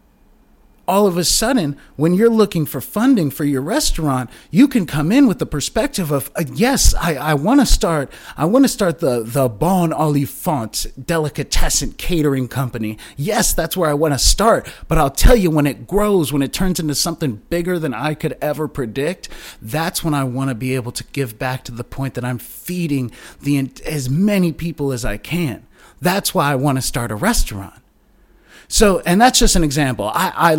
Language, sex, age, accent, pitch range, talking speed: English, male, 30-49, American, 120-160 Hz, 200 wpm